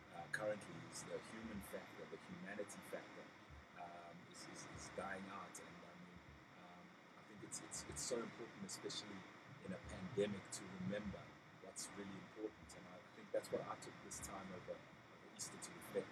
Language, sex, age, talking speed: English, male, 30-49, 175 wpm